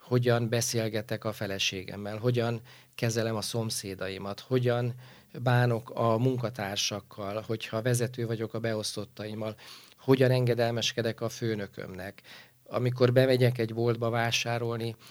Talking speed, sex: 105 wpm, male